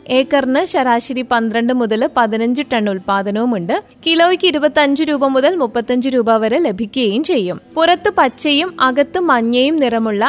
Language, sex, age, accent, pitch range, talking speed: Malayalam, female, 20-39, native, 235-315 Hz, 125 wpm